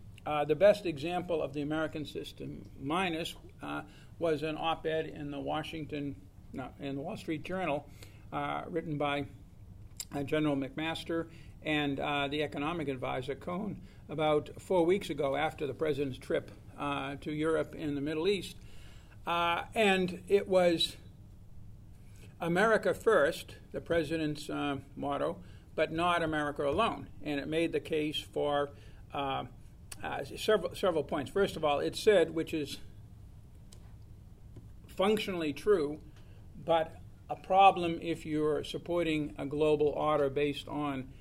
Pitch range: 105-160 Hz